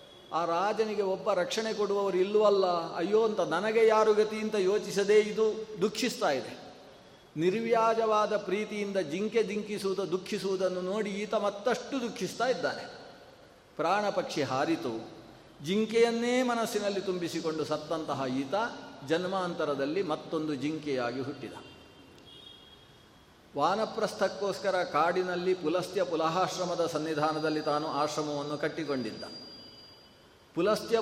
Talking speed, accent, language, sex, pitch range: 85 wpm, native, Kannada, male, 160-210 Hz